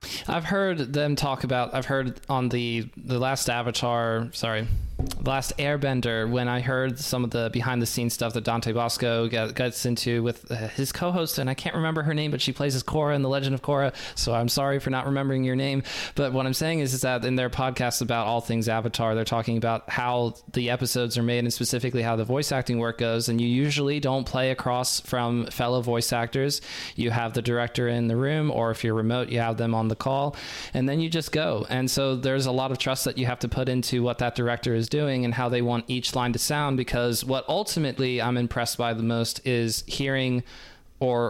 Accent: American